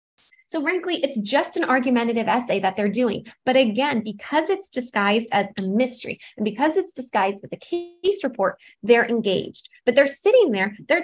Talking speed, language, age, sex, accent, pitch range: 180 wpm, English, 20-39, female, American, 215-300 Hz